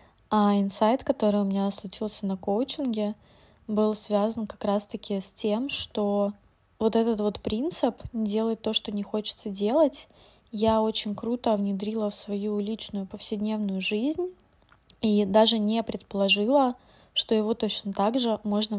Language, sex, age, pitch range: Russian, female, 20-39, 195-220 Hz